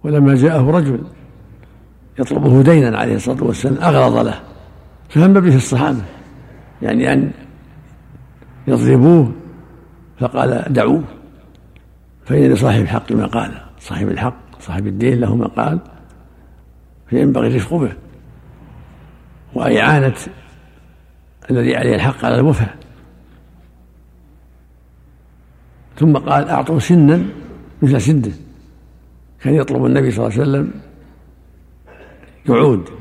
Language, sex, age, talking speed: Arabic, male, 60-79, 100 wpm